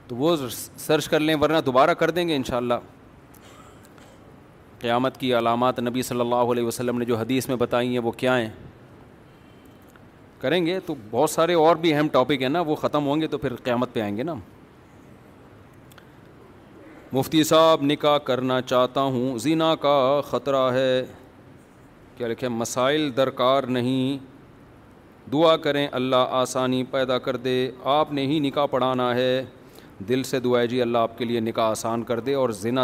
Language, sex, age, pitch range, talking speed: Urdu, male, 40-59, 125-150 Hz, 170 wpm